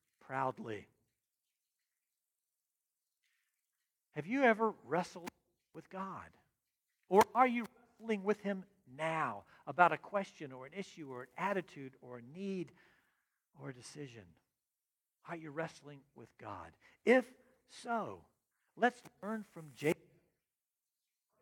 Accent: American